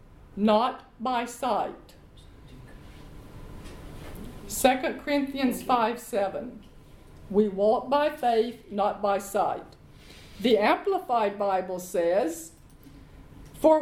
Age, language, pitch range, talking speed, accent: 50-69, English, 220-310 Hz, 80 wpm, American